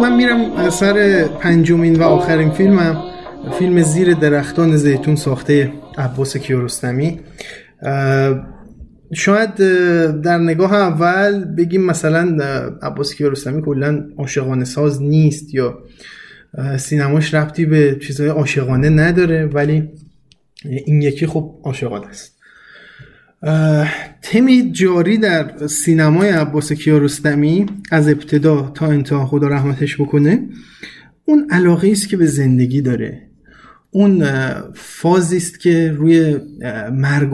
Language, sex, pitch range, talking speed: Persian, male, 140-170 Hz, 105 wpm